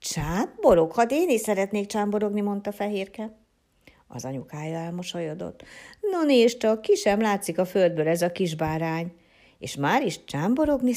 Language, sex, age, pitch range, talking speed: Hungarian, female, 60-79, 155-225 Hz, 140 wpm